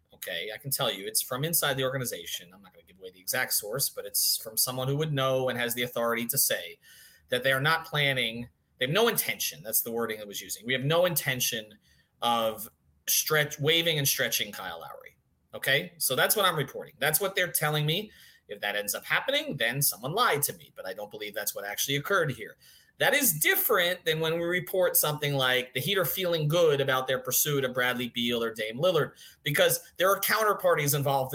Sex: male